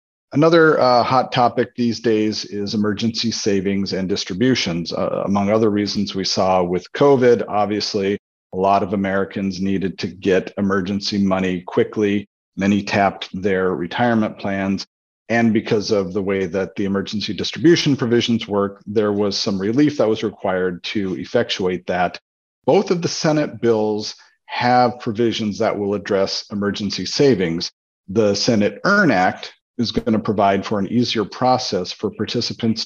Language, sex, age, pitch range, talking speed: English, male, 40-59, 95-115 Hz, 150 wpm